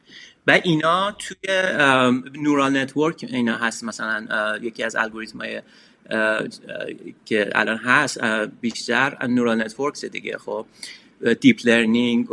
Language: Persian